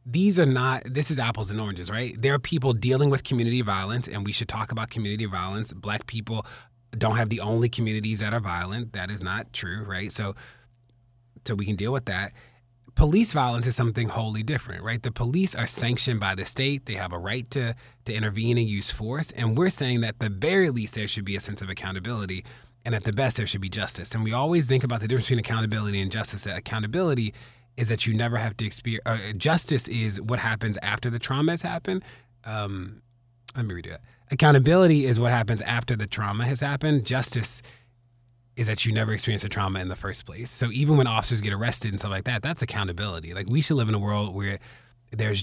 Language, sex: English, male